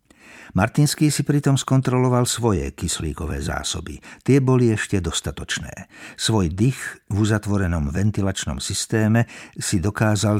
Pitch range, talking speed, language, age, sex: 95-115 Hz, 110 wpm, Slovak, 60-79, male